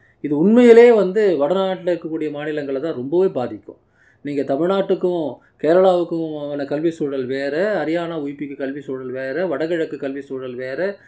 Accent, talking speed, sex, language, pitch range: native, 130 wpm, male, Tamil, 140-185 Hz